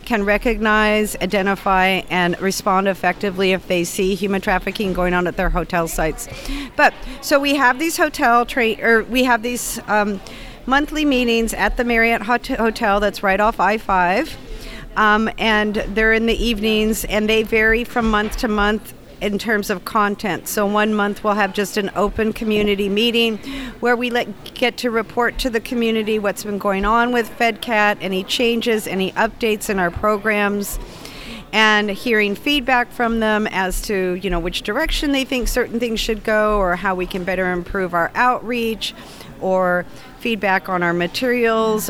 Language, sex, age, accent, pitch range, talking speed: English, female, 50-69, American, 195-235 Hz, 170 wpm